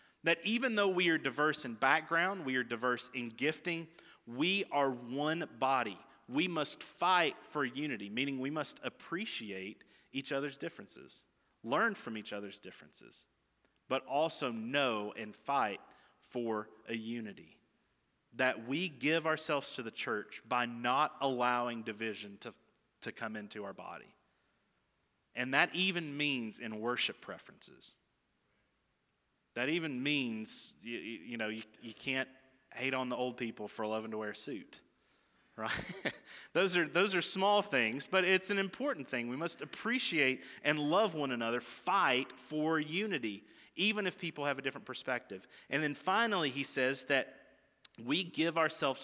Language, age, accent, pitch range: English, 30-49, American, 120-170 Hz